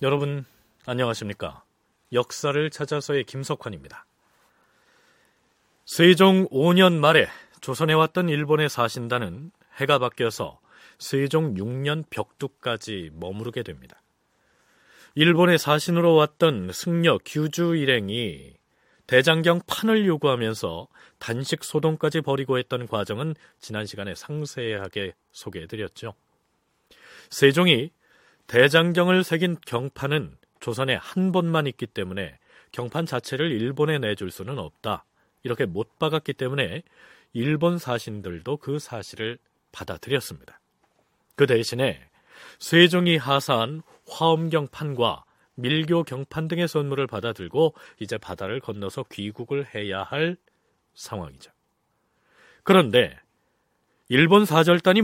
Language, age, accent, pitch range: Korean, 40-59, native, 120-165 Hz